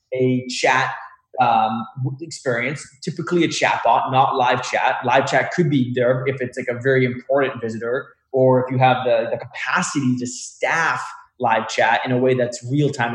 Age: 20-39